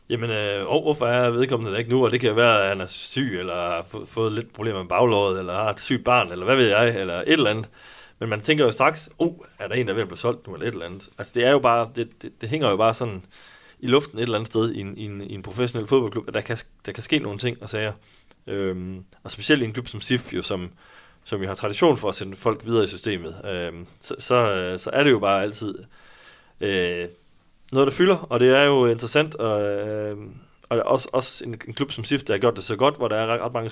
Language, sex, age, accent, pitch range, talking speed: Danish, male, 30-49, native, 95-125 Hz, 275 wpm